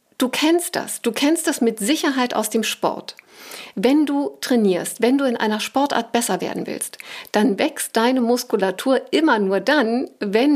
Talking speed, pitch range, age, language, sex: 170 wpm, 215-280 Hz, 50-69, German, female